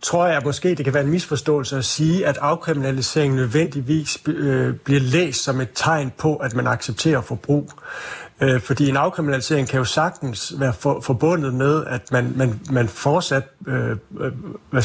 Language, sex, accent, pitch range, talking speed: Danish, male, native, 125-150 Hz, 155 wpm